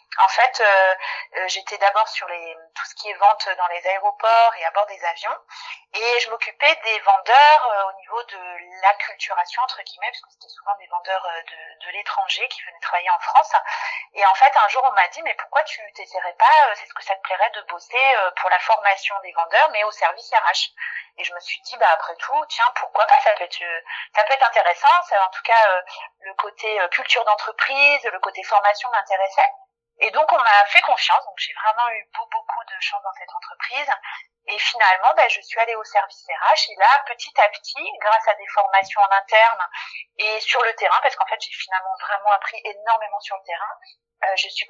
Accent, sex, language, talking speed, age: French, female, French, 230 wpm, 30-49